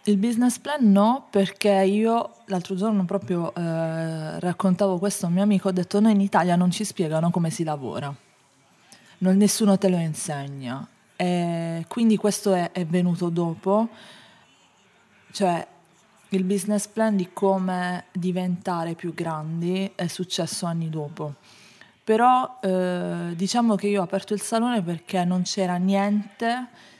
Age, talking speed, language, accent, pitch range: 20-39, 145 wpm, Italian, native, 165-195 Hz